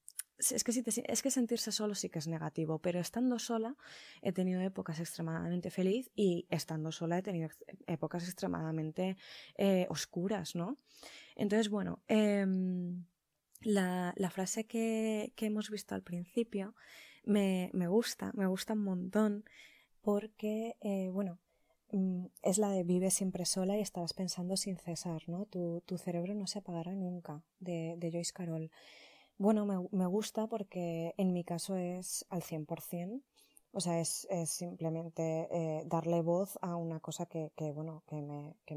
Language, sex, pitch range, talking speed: Spanish, female, 165-200 Hz, 160 wpm